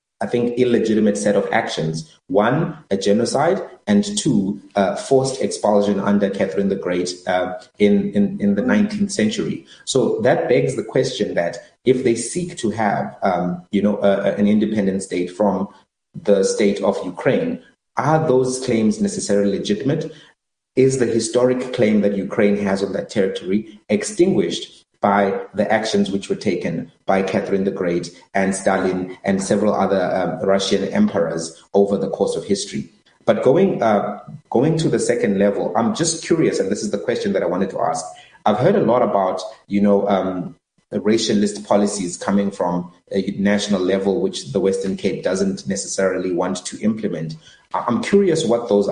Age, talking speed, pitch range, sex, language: 30-49, 165 wpm, 95-125 Hz, male, English